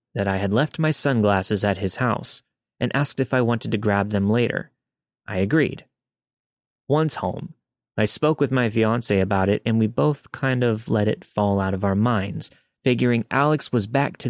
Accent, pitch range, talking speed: American, 105-135 Hz, 195 wpm